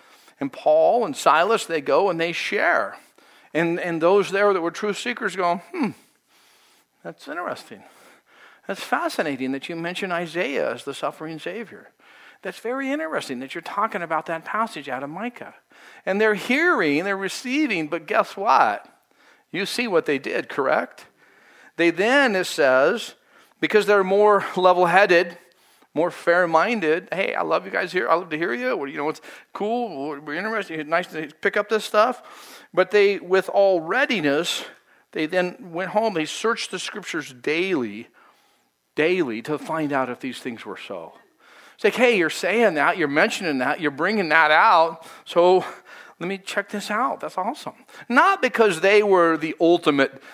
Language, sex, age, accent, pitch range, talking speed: English, male, 50-69, American, 165-215 Hz, 170 wpm